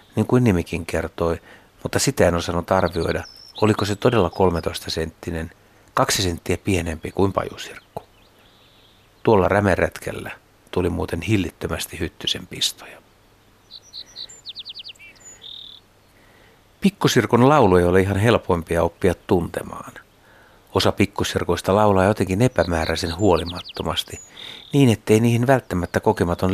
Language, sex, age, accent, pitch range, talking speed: Finnish, male, 60-79, native, 90-110 Hz, 100 wpm